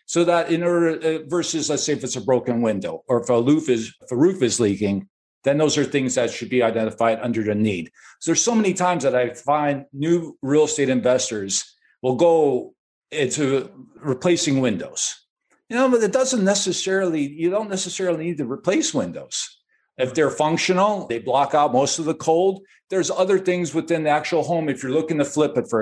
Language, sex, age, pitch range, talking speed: English, male, 50-69, 125-170 Hz, 200 wpm